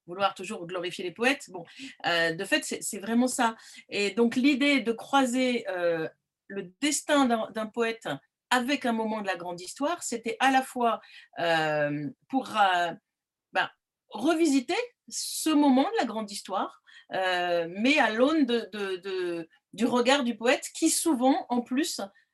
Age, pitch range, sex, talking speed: 40-59, 185-255 Hz, female, 150 wpm